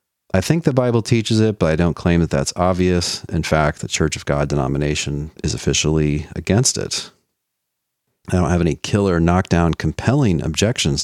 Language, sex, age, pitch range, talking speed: English, male, 40-59, 80-100 Hz, 175 wpm